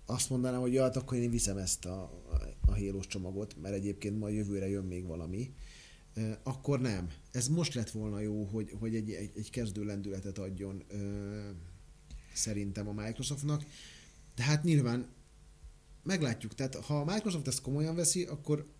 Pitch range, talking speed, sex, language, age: 105-135 Hz, 155 wpm, male, Hungarian, 30-49